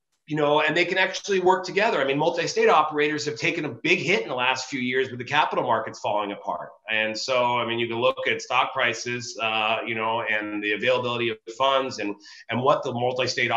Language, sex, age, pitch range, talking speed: English, male, 30-49, 120-150 Hz, 225 wpm